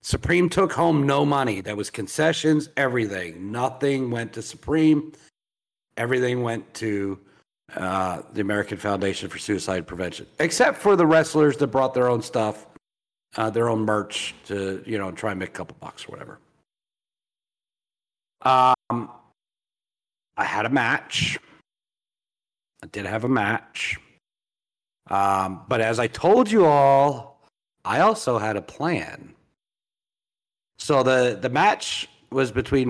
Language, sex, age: English, male, 50-69